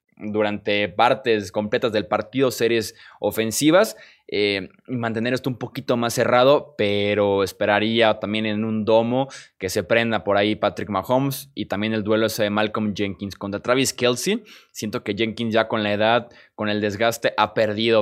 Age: 20-39